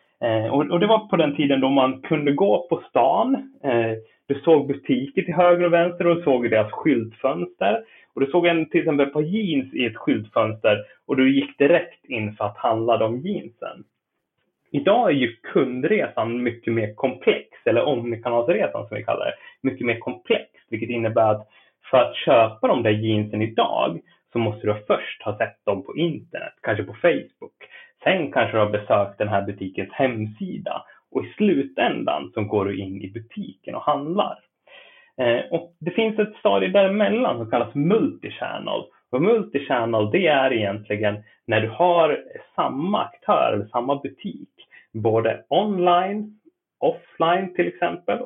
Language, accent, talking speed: Swedish, native, 160 wpm